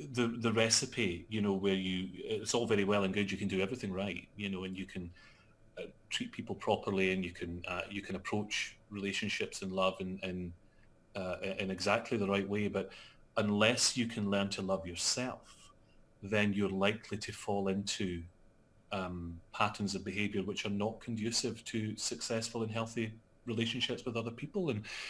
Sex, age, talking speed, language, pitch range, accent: male, 30-49, 180 wpm, English, 100-115 Hz, British